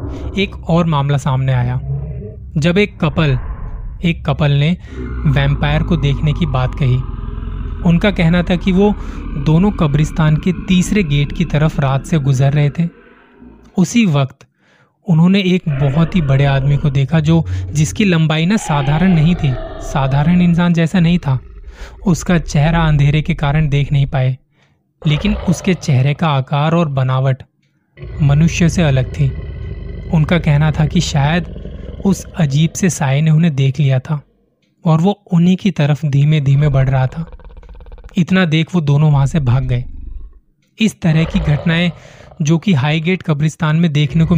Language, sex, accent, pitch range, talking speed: Hindi, male, native, 135-165 Hz, 160 wpm